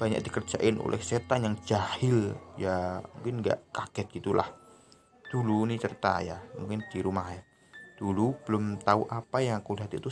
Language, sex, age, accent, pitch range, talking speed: Indonesian, male, 20-39, native, 100-130 Hz, 160 wpm